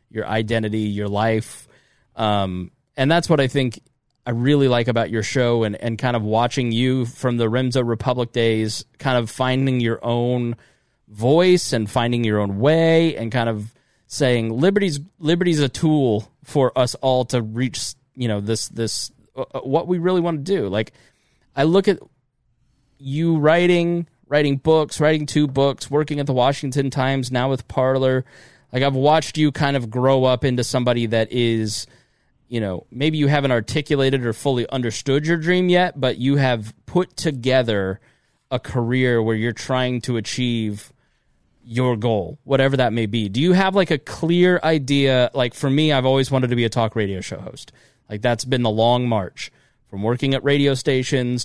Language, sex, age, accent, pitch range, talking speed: English, male, 20-39, American, 115-140 Hz, 180 wpm